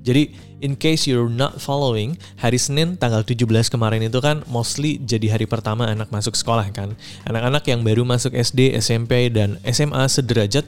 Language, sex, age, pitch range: Indonesian, male, 20-39, 110-135 Hz